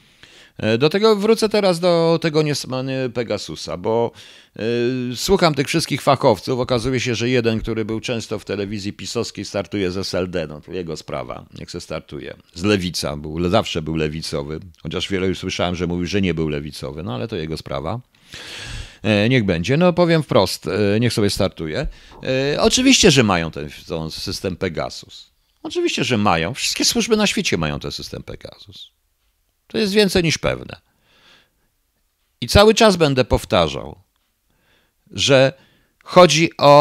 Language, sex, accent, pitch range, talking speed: Polish, male, native, 95-150 Hz, 155 wpm